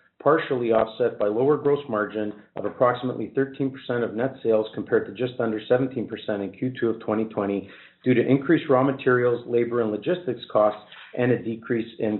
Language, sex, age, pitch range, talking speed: English, male, 40-59, 110-130 Hz, 165 wpm